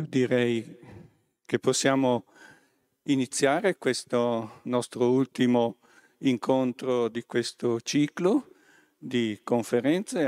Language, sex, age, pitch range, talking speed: Italian, male, 50-69, 110-135 Hz, 75 wpm